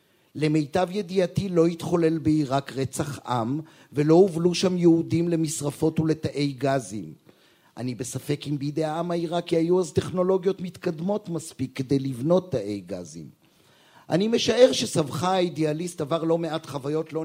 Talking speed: 130 wpm